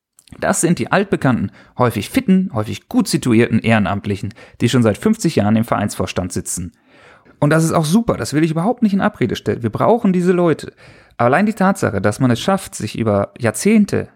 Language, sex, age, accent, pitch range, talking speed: German, male, 30-49, German, 115-175 Hz, 195 wpm